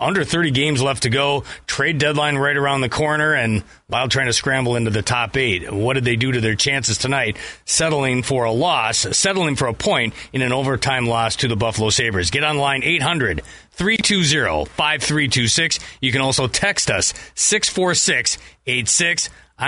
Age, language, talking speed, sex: 40-59, English, 165 wpm, male